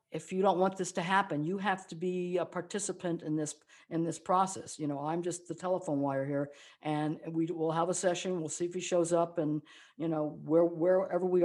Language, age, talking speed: English, 60-79, 230 wpm